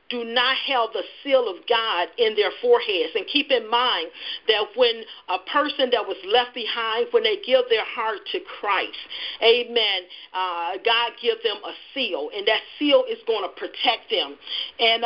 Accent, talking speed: American, 180 wpm